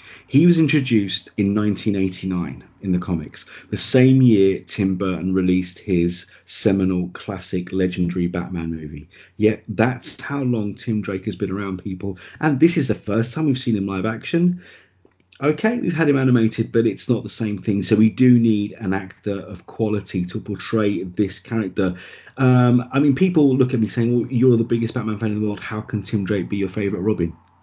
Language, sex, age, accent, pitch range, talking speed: English, male, 30-49, British, 95-120 Hz, 195 wpm